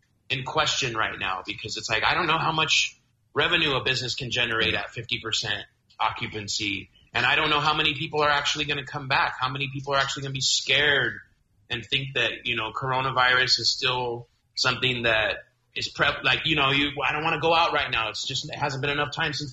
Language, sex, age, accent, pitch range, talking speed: English, male, 30-49, American, 110-145 Hz, 225 wpm